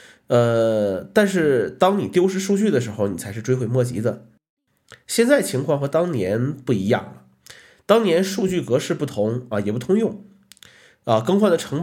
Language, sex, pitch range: Chinese, male, 110-165 Hz